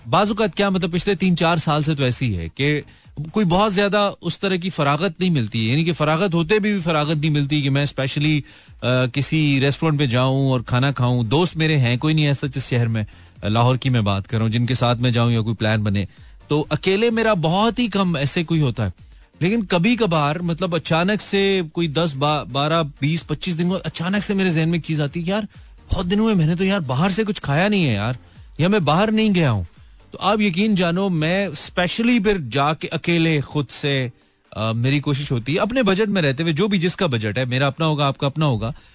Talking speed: 225 wpm